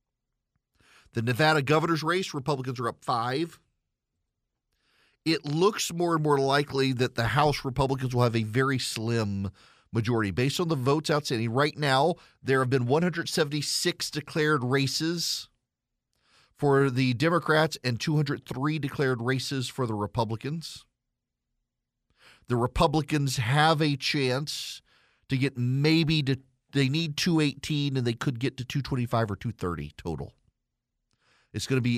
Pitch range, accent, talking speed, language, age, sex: 115-140 Hz, American, 135 wpm, English, 40-59, male